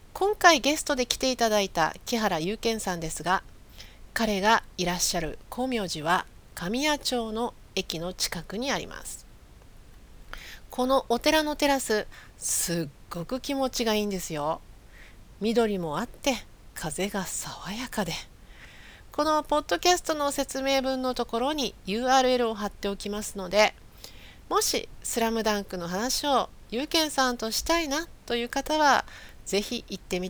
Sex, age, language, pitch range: female, 40-59, Japanese, 190-275 Hz